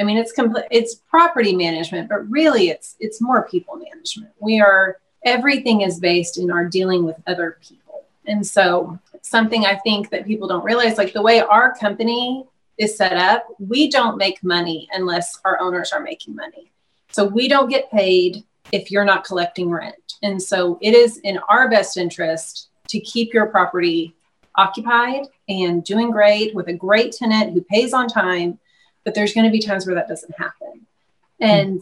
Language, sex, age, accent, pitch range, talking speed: English, female, 30-49, American, 185-230 Hz, 185 wpm